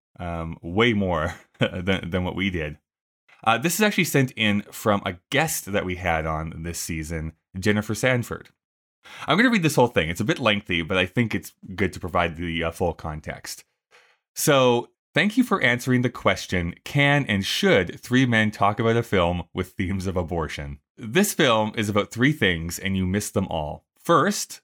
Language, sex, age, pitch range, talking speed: English, male, 20-39, 85-120 Hz, 190 wpm